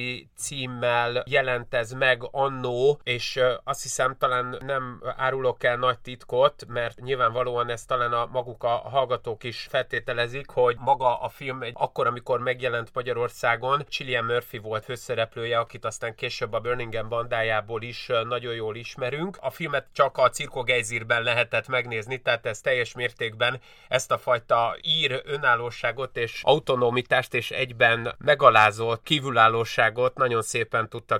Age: 30-49